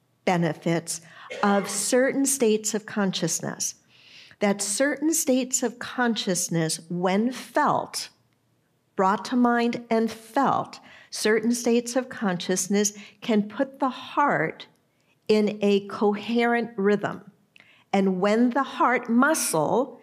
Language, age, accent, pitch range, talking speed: English, 50-69, American, 195-240 Hz, 105 wpm